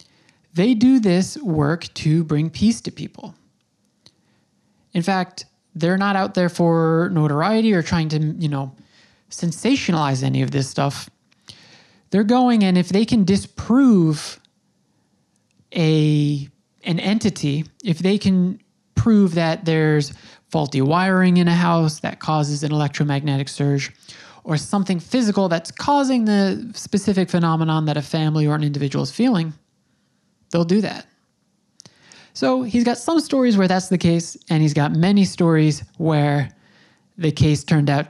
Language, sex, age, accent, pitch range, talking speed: English, male, 30-49, American, 150-185 Hz, 145 wpm